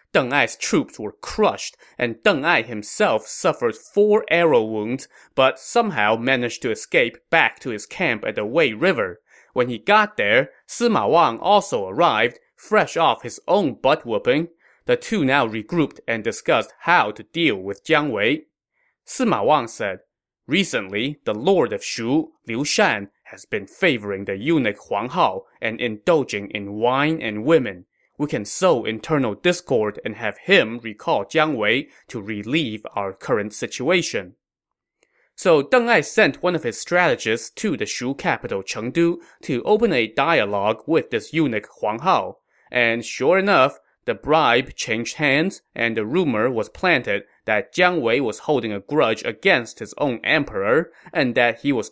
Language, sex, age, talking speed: English, male, 20-39, 160 wpm